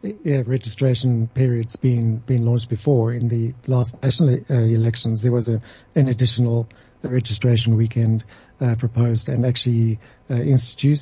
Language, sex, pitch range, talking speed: English, male, 120-135 Hz, 140 wpm